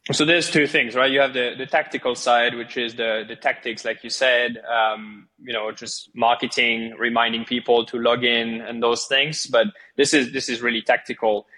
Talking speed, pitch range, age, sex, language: 200 wpm, 115-135 Hz, 20-39, male, English